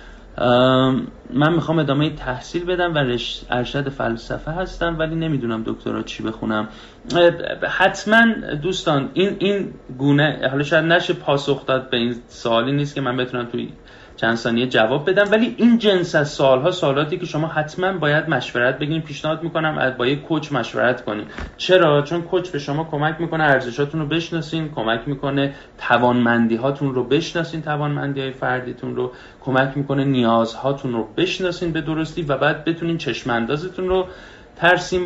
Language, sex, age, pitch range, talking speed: Persian, male, 30-49, 125-170 Hz, 150 wpm